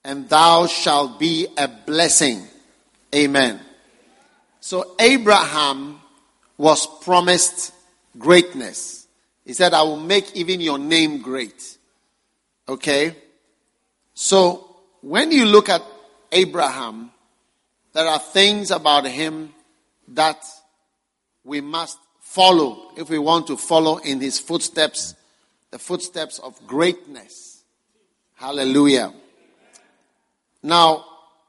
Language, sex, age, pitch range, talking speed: English, male, 50-69, 140-180 Hz, 100 wpm